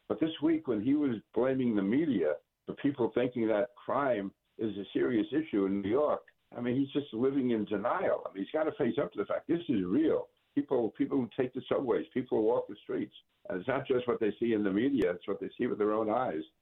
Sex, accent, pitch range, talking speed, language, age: male, American, 100-140 Hz, 255 wpm, English, 60-79